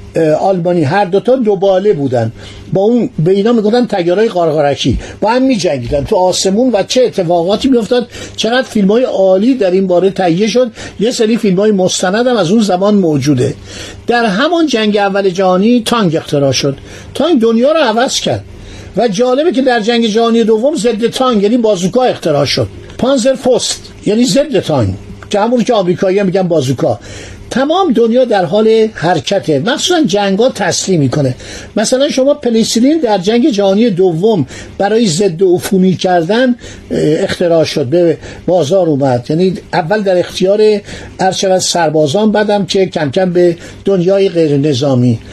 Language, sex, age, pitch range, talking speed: Persian, male, 50-69, 165-235 Hz, 150 wpm